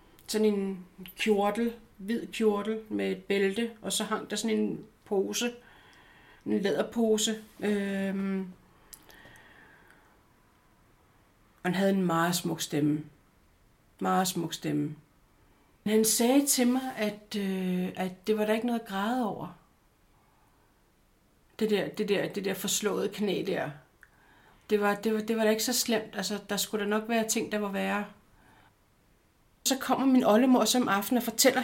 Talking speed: 155 wpm